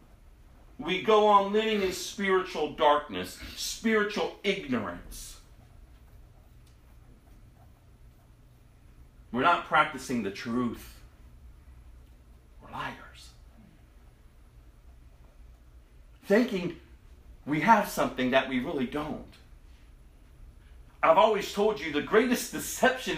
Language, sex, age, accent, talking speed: English, male, 40-59, American, 80 wpm